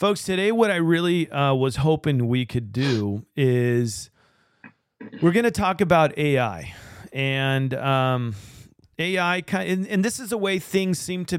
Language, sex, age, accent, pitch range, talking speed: English, male, 40-59, American, 130-165 Hz, 170 wpm